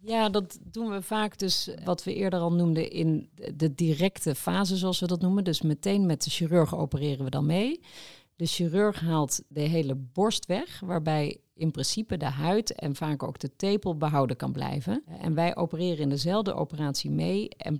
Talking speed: 190 wpm